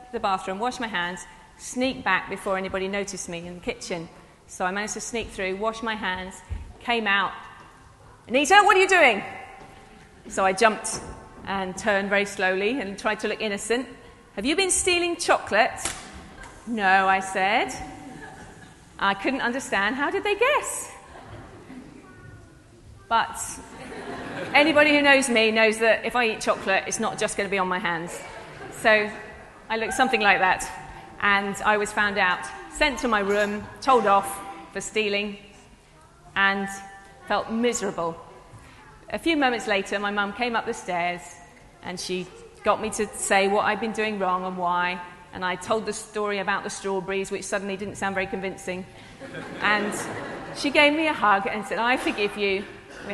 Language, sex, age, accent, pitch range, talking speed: English, female, 30-49, British, 190-230 Hz, 165 wpm